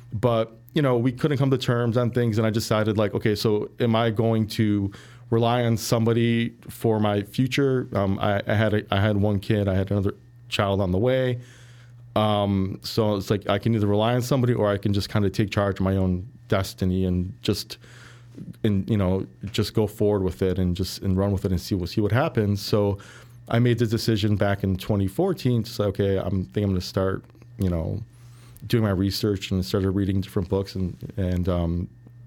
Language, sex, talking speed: English, male, 215 wpm